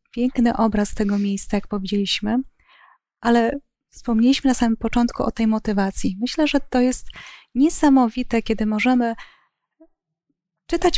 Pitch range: 220-255 Hz